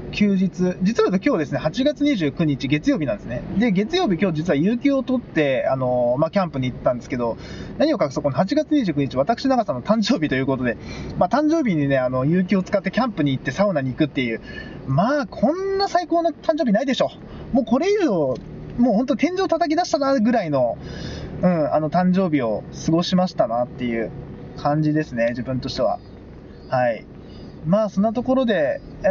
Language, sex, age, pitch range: Japanese, male, 20-39, 150-235 Hz